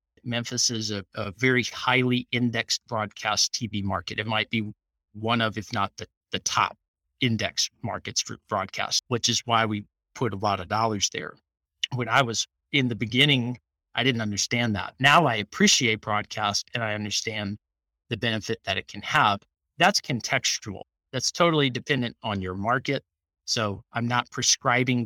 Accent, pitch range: American, 105-130 Hz